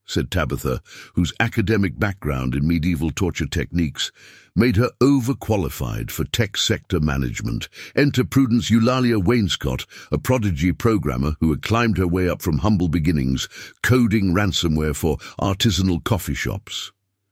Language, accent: English, British